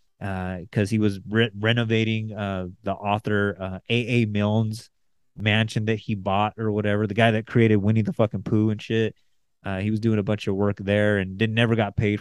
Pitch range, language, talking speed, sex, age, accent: 100-115 Hz, English, 205 wpm, male, 30-49, American